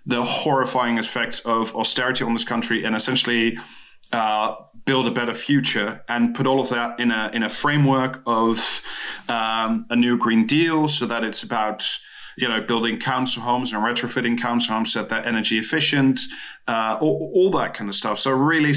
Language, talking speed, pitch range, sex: English, 185 wpm, 120-135 Hz, male